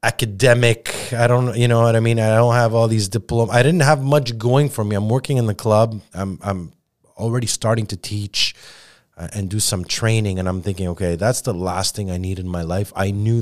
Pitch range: 100-125 Hz